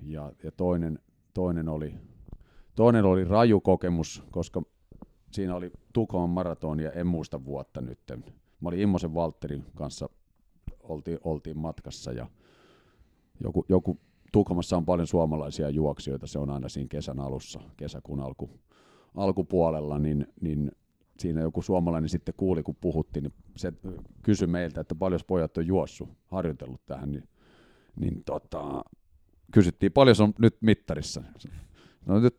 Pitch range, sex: 80-105 Hz, male